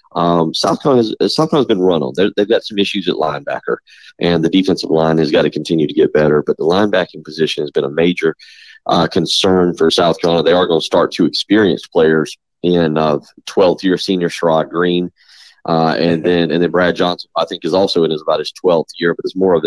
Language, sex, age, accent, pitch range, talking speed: English, male, 30-49, American, 80-95 Hz, 235 wpm